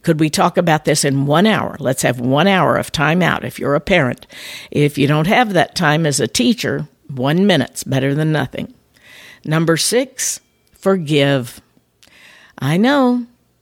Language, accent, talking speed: English, American, 170 wpm